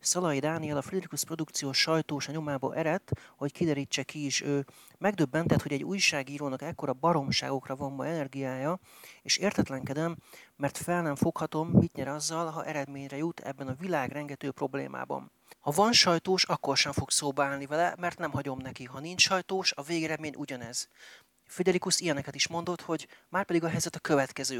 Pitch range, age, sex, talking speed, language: 140-165 Hz, 30-49, male, 165 wpm, Hungarian